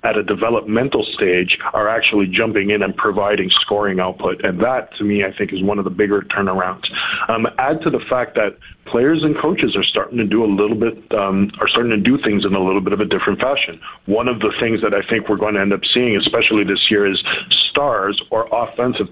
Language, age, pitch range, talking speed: English, 40-59, 100-115 Hz, 230 wpm